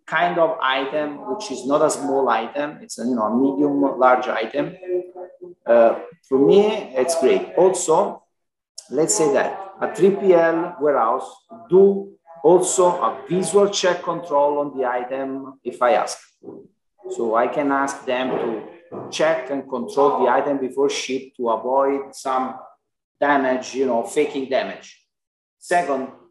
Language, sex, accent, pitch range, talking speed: Hebrew, male, Italian, 130-165 Hz, 145 wpm